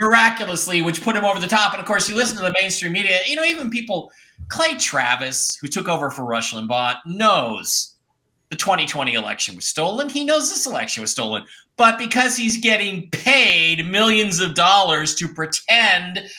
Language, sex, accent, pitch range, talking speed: English, male, American, 145-225 Hz, 185 wpm